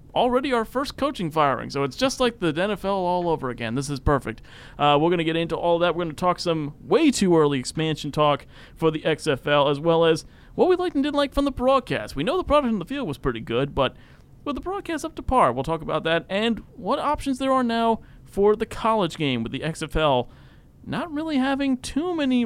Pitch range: 130-195 Hz